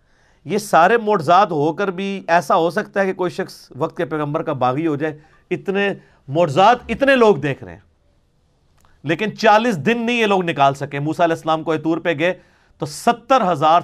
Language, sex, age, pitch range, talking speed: Urdu, male, 40-59, 130-185 Hz, 195 wpm